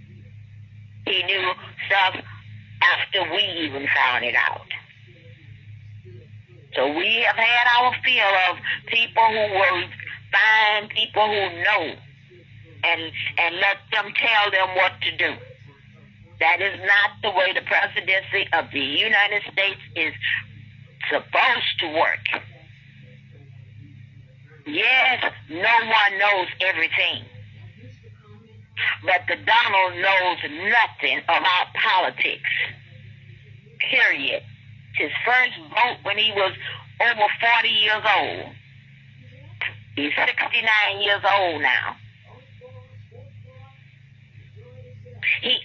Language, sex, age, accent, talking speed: English, female, 50-69, American, 100 wpm